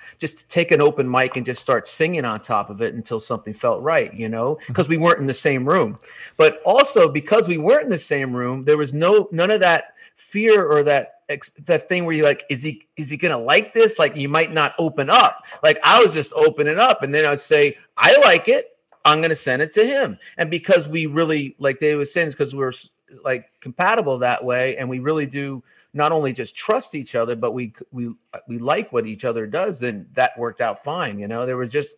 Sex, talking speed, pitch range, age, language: male, 240 wpm, 120-165 Hz, 40-59, English